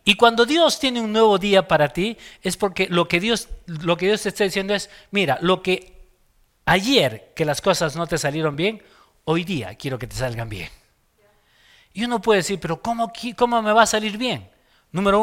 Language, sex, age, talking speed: Spanish, male, 40-59, 195 wpm